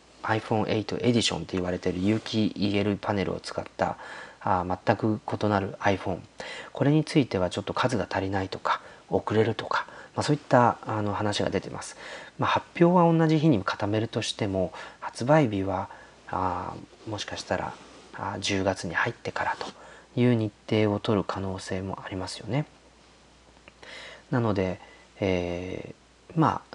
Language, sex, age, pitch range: Japanese, male, 40-59, 95-115 Hz